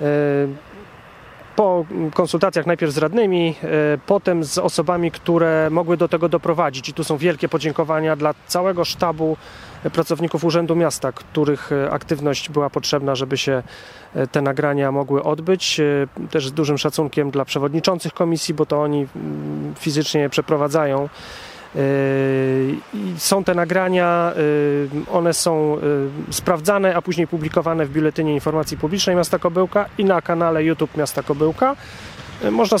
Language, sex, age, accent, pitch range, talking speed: Polish, male, 30-49, native, 150-185 Hz, 125 wpm